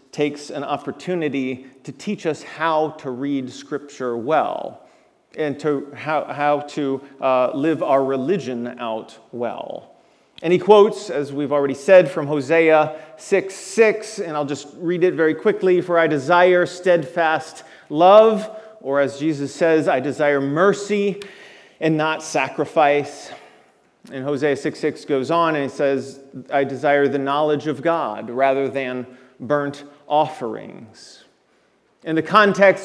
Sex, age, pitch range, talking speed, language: male, 40-59, 145-195 Hz, 140 wpm, English